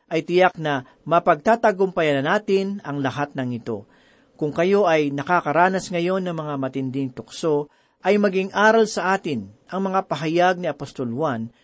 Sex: male